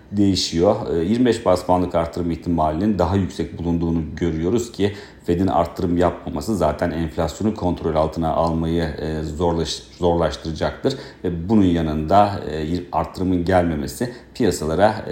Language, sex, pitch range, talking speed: Turkish, male, 80-95 Hz, 105 wpm